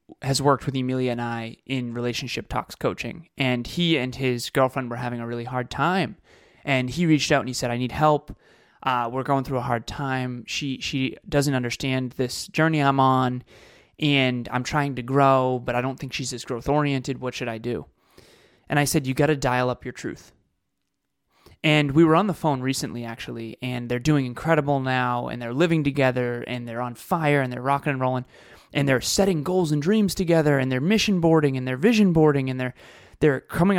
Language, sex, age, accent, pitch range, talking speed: English, male, 20-39, American, 125-155 Hz, 210 wpm